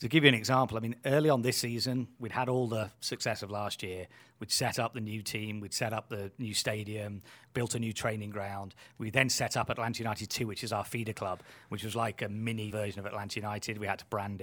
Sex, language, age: male, English, 30-49